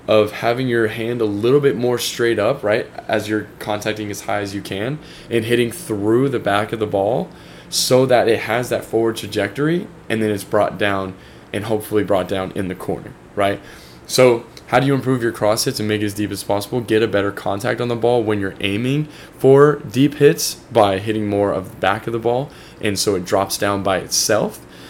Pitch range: 100-120 Hz